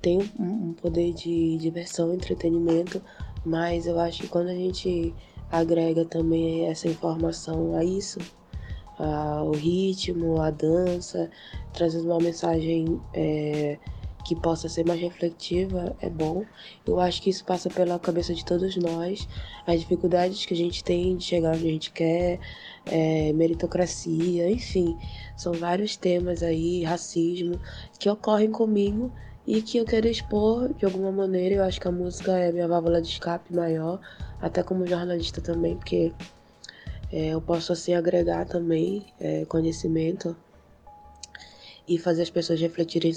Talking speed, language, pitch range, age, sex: 145 wpm, Portuguese, 165-180 Hz, 20-39, female